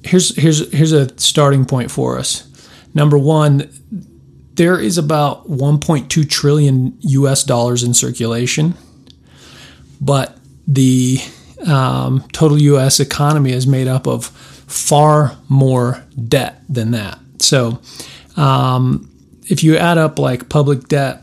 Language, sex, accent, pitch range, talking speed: English, male, American, 125-145 Hz, 120 wpm